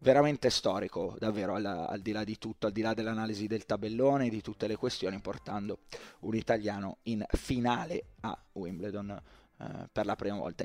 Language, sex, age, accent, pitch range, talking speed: Italian, male, 20-39, native, 110-135 Hz, 170 wpm